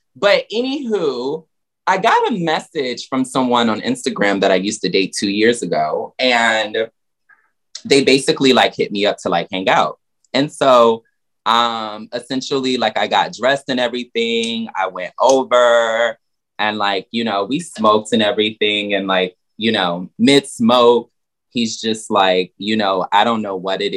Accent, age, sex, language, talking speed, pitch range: American, 20-39, male, English, 165 wpm, 105-140 Hz